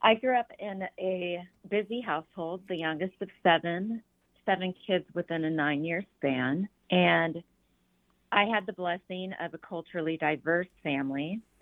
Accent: American